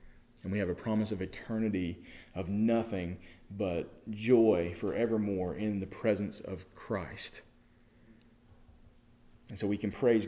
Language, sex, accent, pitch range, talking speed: English, male, American, 105-155 Hz, 130 wpm